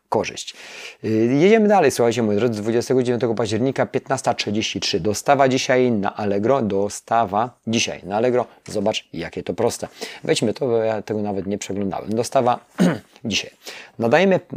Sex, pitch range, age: male, 100-120 Hz, 30-49